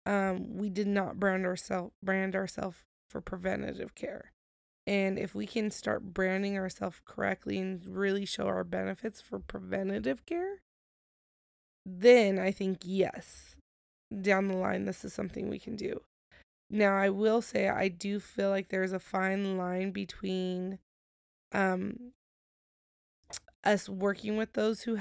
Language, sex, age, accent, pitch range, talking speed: English, female, 20-39, American, 185-205 Hz, 140 wpm